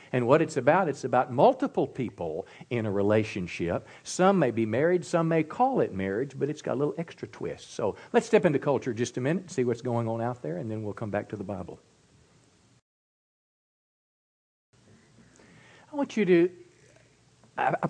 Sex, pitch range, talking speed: male, 100-140 Hz, 180 wpm